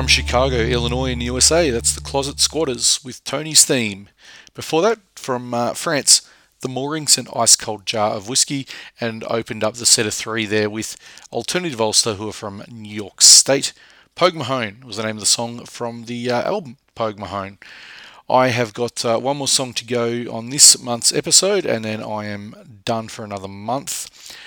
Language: English